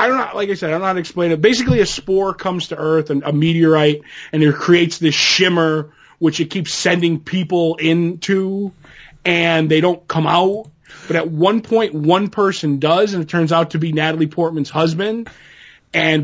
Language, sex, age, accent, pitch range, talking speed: English, male, 30-49, American, 155-180 Hz, 205 wpm